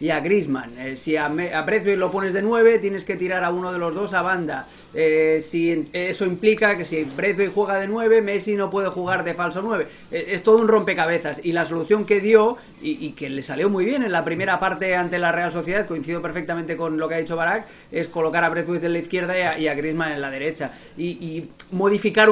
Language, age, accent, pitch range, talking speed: Spanish, 30-49, Spanish, 160-200 Hz, 240 wpm